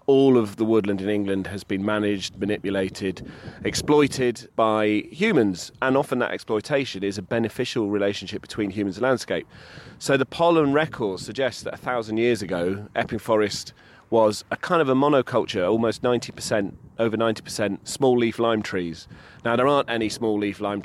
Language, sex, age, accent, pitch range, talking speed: English, male, 30-49, British, 105-125 Hz, 160 wpm